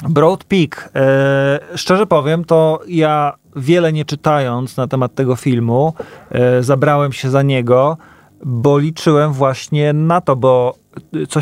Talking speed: 125 wpm